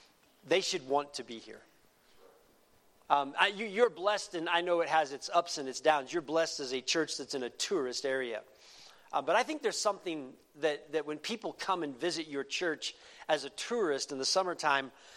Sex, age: male, 40-59